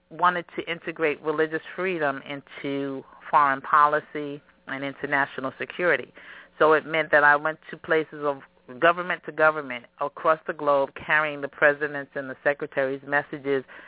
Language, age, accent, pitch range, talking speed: English, 50-69, American, 140-155 Hz, 145 wpm